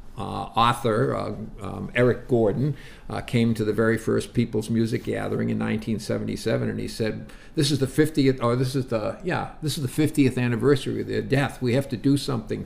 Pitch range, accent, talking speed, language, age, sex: 110-130 Hz, American, 200 wpm, English, 50-69, male